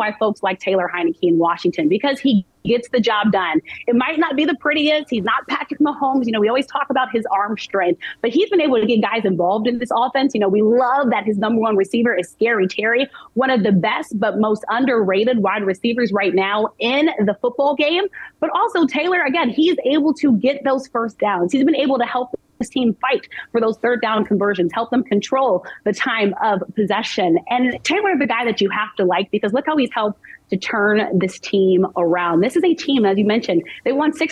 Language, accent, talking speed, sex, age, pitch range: English, American, 225 wpm, female, 30-49, 205-275 Hz